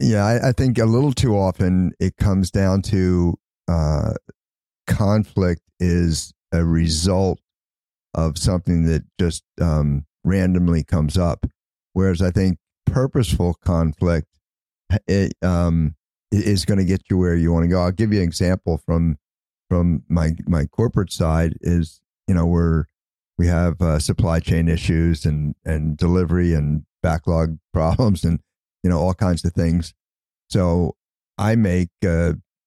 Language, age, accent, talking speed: English, 50-69, American, 145 wpm